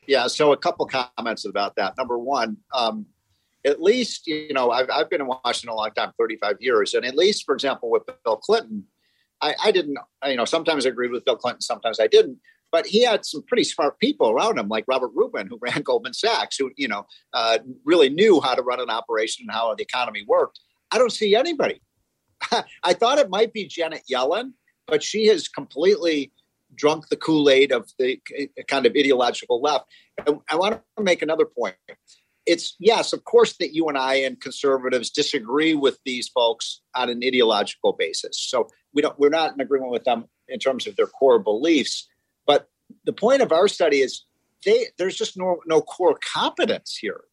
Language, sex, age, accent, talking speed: English, male, 50-69, American, 200 wpm